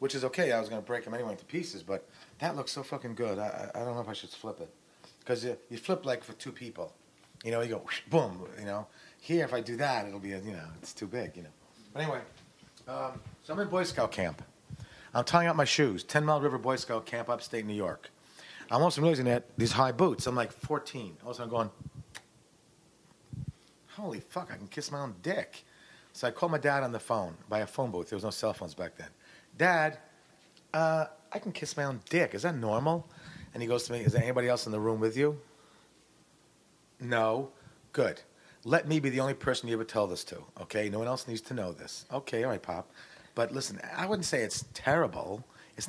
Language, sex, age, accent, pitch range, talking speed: English, male, 40-59, American, 115-150 Hz, 235 wpm